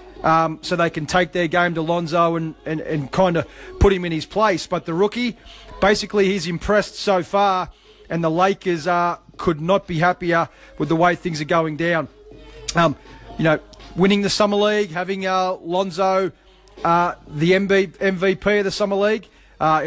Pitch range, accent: 160-190 Hz, Australian